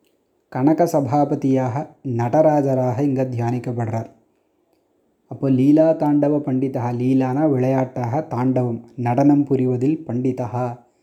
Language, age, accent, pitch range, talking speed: Tamil, 20-39, native, 125-145 Hz, 80 wpm